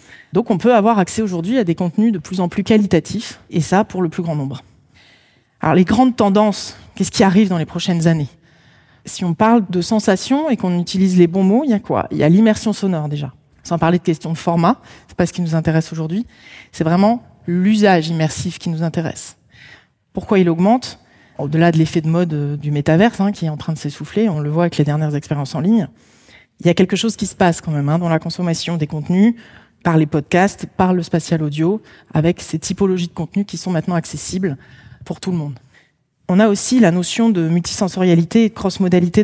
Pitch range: 165-195 Hz